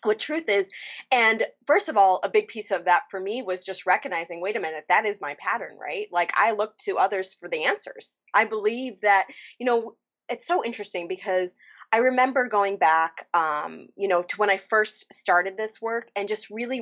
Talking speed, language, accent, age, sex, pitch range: 210 wpm, English, American, 20-39, female, 185-240 Hz